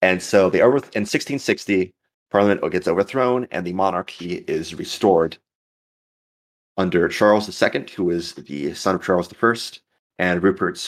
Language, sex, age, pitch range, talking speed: English, male, 30-49, 90-115 Hz, 145 wpm